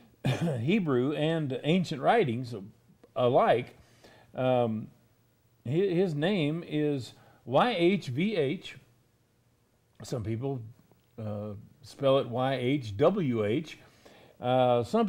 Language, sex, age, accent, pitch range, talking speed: English, male, 50-69, American, 120-160 Hz, 75 wpm